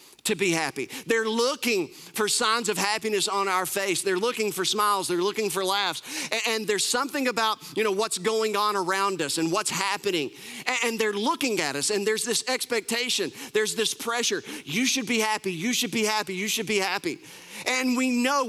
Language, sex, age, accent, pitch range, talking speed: English, male, 40-59, American, 205-250 Hz, 205 wpm